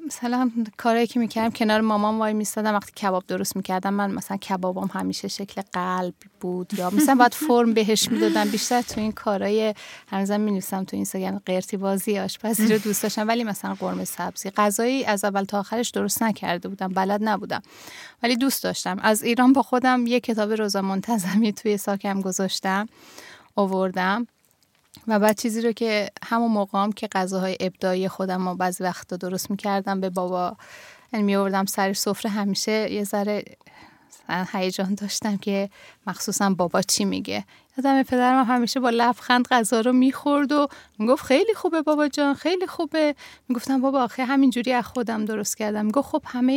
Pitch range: 195-235 Hz